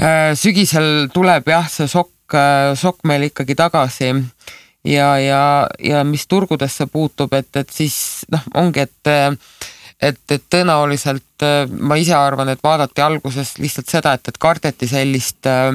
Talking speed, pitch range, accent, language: 135 wpm, 130-145 Hz, Finnish, English